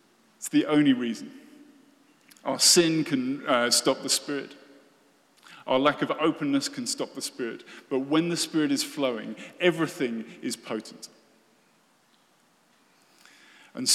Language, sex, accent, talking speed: English, male, British, 120 wpm